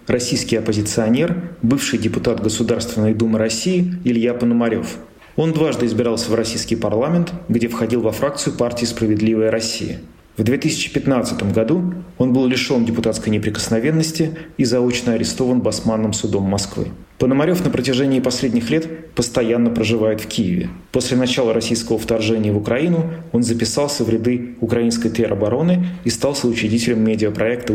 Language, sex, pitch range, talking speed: Russian, male, 110-130 Hz, 130 wpm